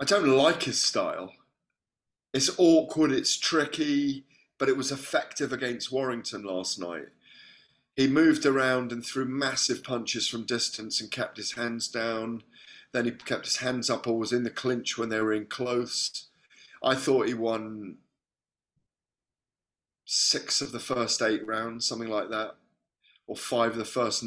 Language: English